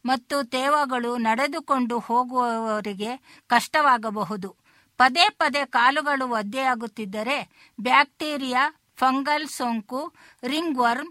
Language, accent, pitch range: Kannada, native, 235-285 Hz